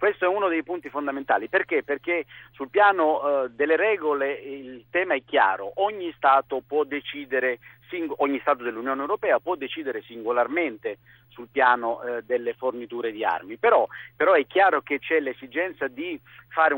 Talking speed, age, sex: 150 wpm, 50-69, male